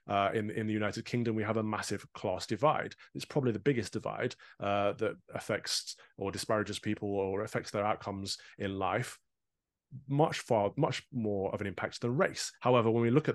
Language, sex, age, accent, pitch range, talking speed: English, male, 30-49, British, 100-120 Hz, 195 wpm